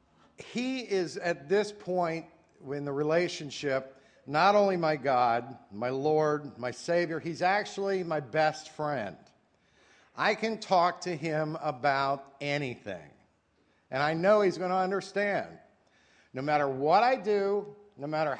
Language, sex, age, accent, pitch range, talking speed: English, male, 50-69, American, 140-185 Hz, 135 wpm